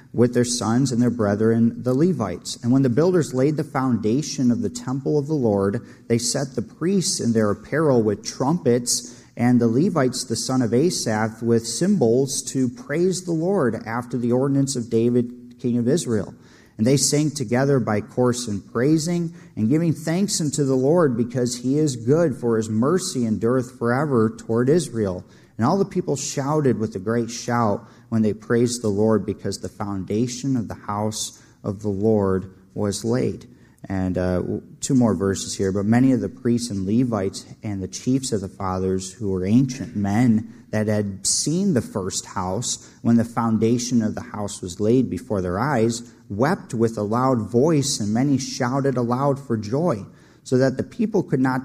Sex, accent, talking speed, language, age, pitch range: male, American, 185 wpm, English, 40-59, 110-135 Hz